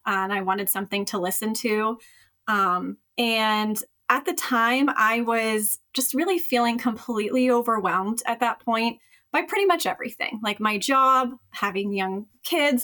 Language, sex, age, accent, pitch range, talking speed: English, female, 30-49, American, 215-275 Hz, 150 wpm